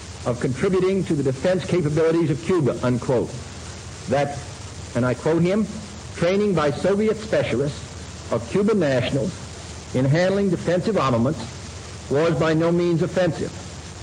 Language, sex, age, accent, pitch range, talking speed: English, male, 60-79, American, 110-175 Hz, 130 wpm